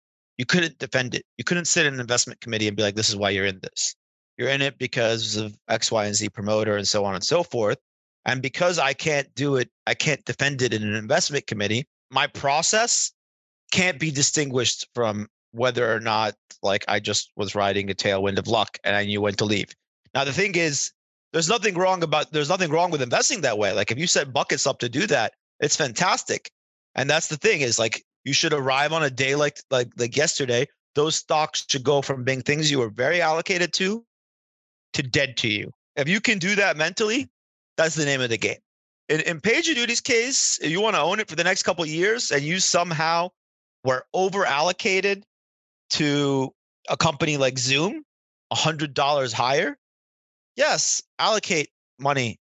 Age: 30-49